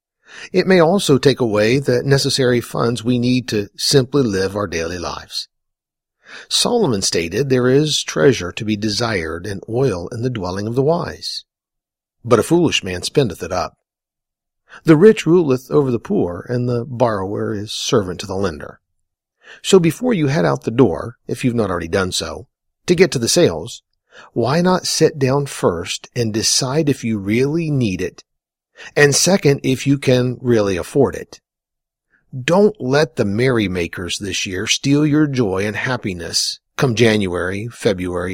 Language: English